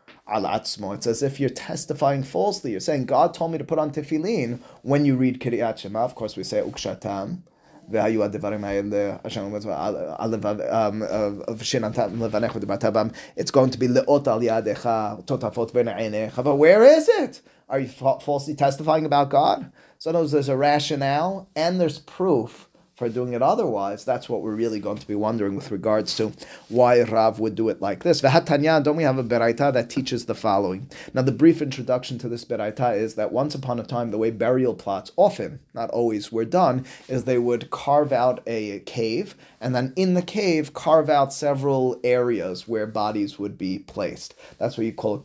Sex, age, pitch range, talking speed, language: male, 30-49, 110-145 Hz, 165 wpm, English